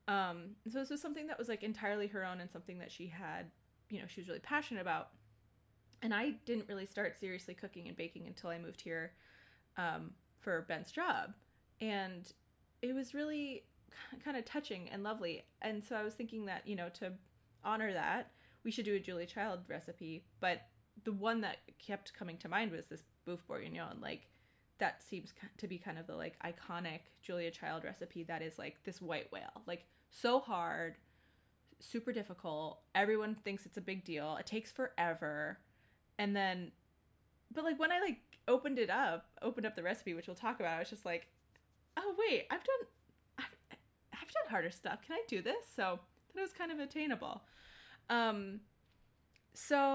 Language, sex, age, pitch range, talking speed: English, female, 20-39, 175-245 Hz, 185 wpm